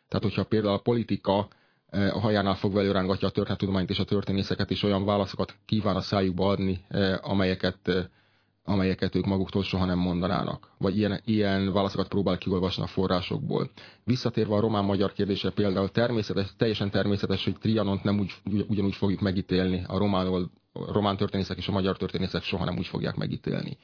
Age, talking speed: 30-49, 165 wpm